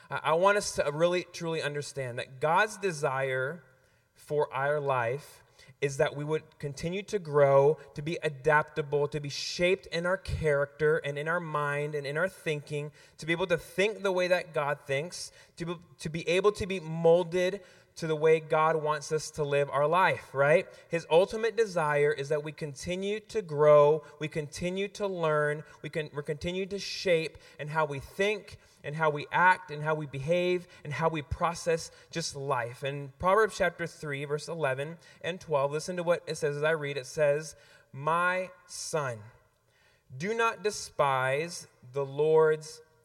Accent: American